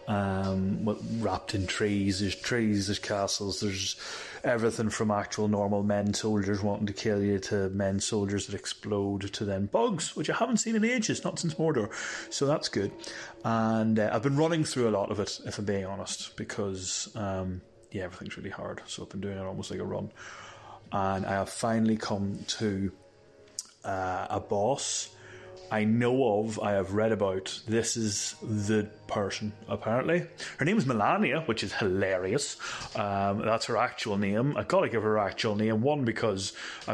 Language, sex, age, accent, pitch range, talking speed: English, male, 30-49, British, 100-115 Hz, 185 wpm